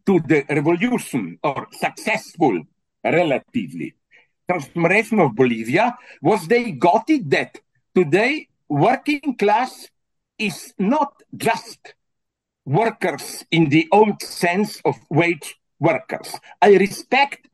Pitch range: 160-240 Hz